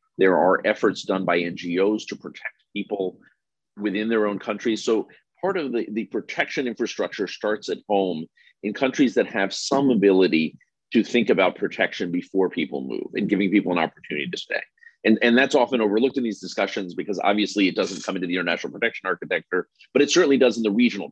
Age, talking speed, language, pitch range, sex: 40-59, 195 wpm, English, 90-115 Hz, male